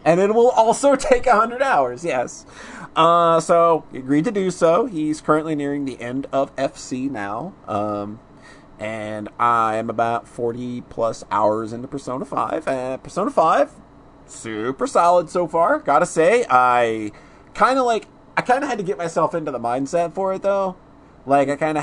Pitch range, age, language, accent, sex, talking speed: 120-155 Hz, 30-49, English, American, male, 180 wpm